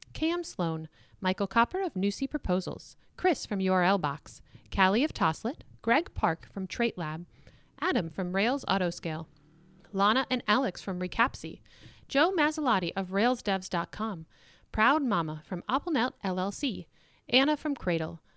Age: 40-59